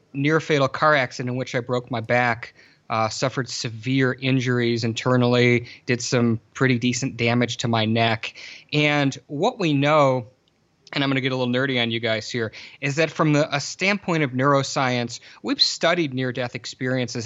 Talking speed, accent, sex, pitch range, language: 175 wpm, American, male, 125-150 Hz, English